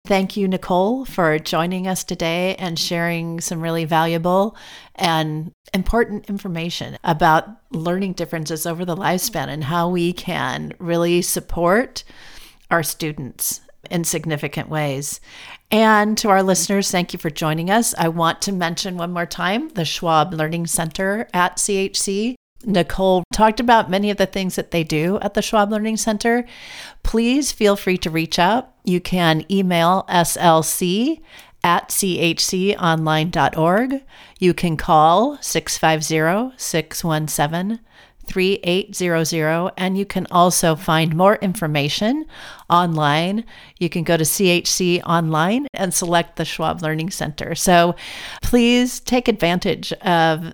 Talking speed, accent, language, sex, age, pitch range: 135 wpm, American, English, female, 40-59, 165-200 Hz